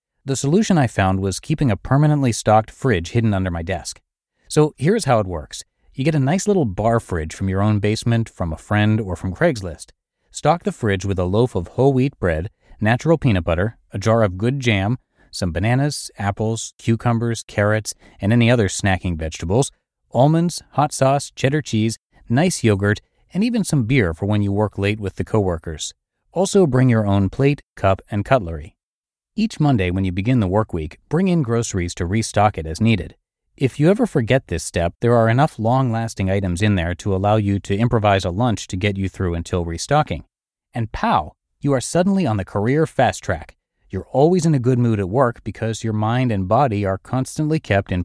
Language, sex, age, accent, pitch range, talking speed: English, male, 30-49, American, 95-130 Hz, 200 wpm